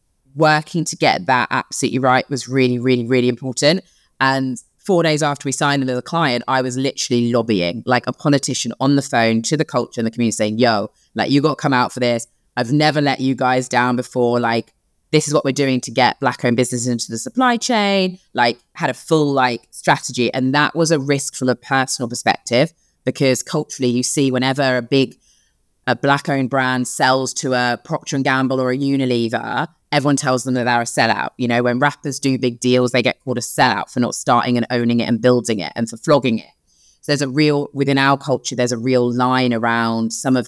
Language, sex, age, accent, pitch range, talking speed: English, female, 20-39, British, 120-140 Hz, 215 wpm